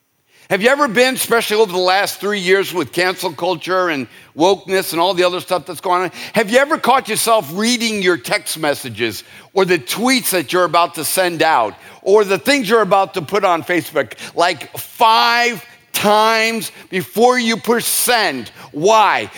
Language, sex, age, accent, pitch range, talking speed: English, male, 50-69, American, 155-210 Hz, 180 wpm